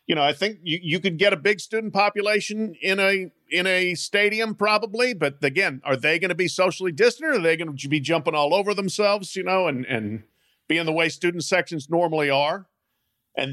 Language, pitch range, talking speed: English, 140-185 Hz, 220 wpm